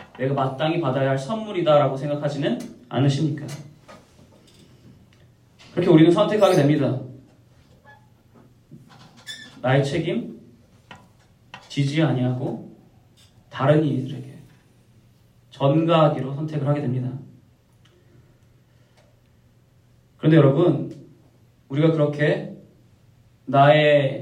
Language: Korean